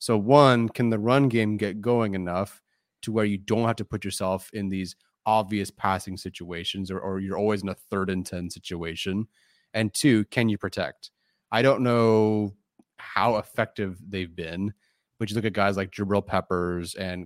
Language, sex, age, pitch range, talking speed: English, male, 30-49, 95-110 Hz, 185 wpm